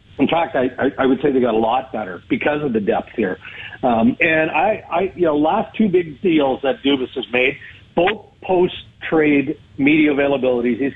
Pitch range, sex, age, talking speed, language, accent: 125-155 Hz, male, 50-69, 190 wpm, English, American